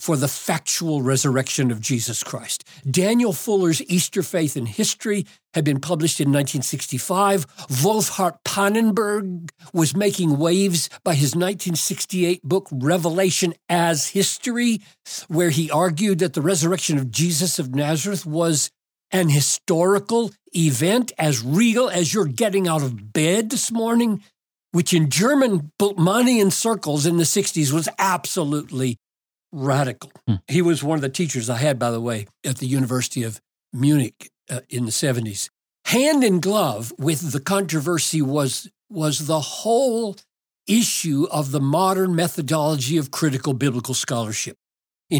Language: English